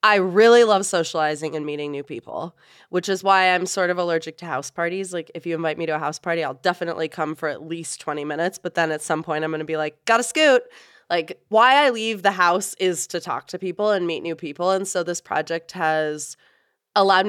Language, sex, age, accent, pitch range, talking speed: English, female, 20-39, American, 165-210 Hz, 235 wpm